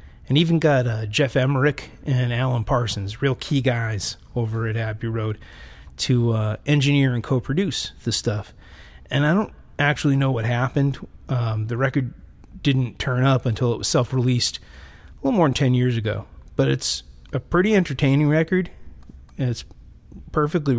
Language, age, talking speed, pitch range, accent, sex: English, 30-49, 160 wpm, 110-140 Hz, American, male